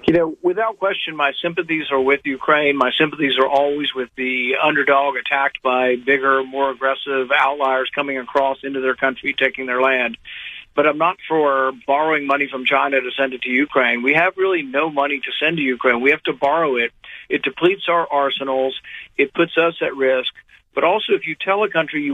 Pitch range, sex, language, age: 130-155 Hz, male, English, 50-69